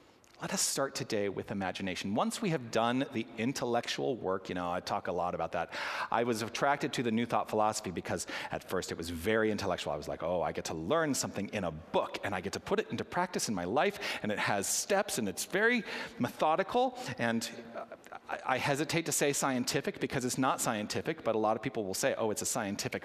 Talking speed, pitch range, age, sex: 230 wpm, 115-165 Hz, 40-59, male